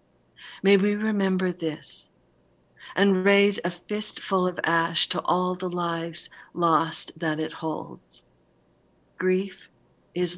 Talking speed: 115 wpm